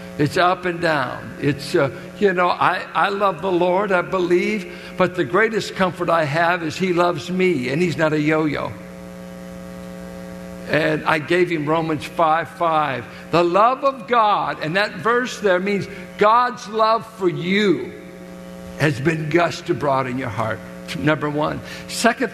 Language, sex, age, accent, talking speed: English, male, 60-79, American, 160 wpm